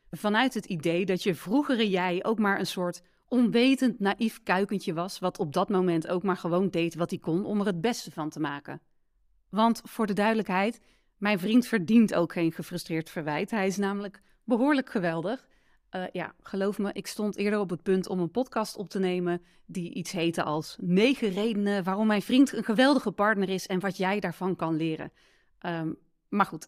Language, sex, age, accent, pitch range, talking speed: Dutch, female, 30-49, Dutch, 175-220 Hz, 195 wpm